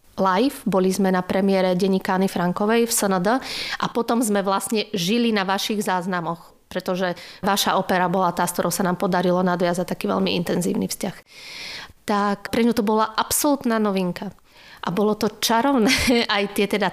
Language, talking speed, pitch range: Slovak, 165 wpm, 185-220 Hz